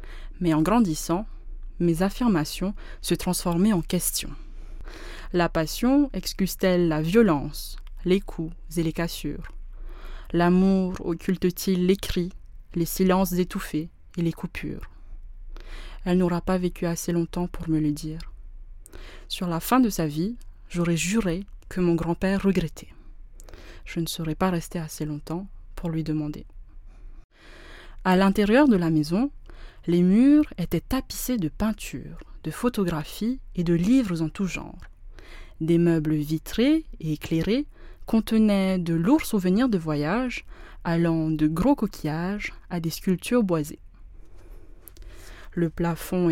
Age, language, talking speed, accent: 20-39, French, 130 wpm, French